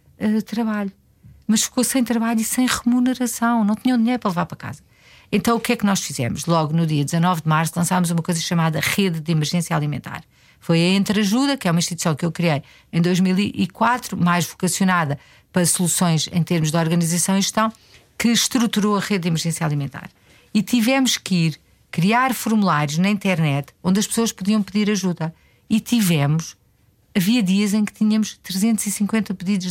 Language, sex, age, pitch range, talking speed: Portuguese, female, 50-69, 170-215 Hz, 180 wpm